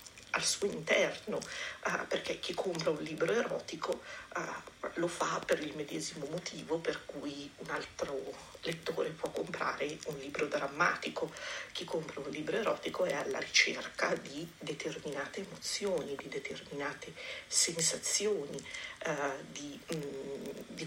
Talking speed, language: 130 wpm, Italian